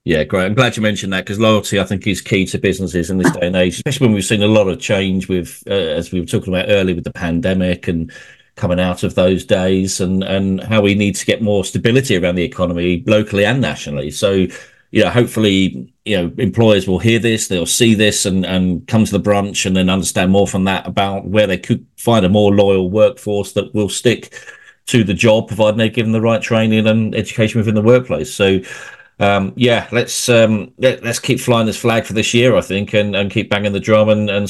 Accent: British